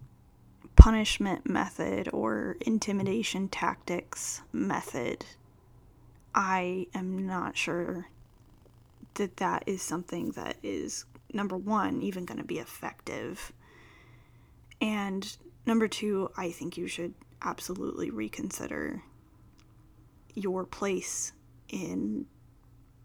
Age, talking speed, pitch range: 10-29, 90 wpm, 120-205 Hz